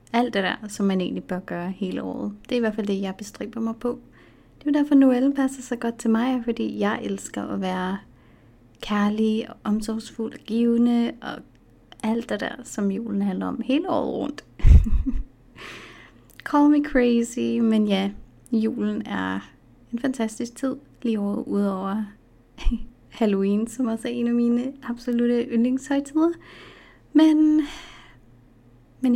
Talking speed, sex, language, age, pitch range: 150 wpm, female, Danish, 30-49, 200-250 Hz